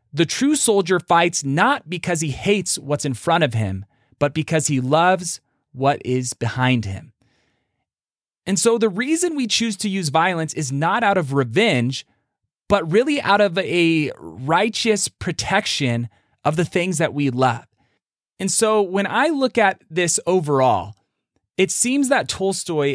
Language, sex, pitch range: English, male, 130-190 Hz